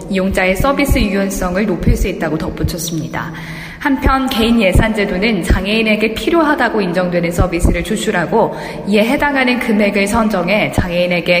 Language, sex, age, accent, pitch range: Korean, female, 20-39, native, 185-240 Hz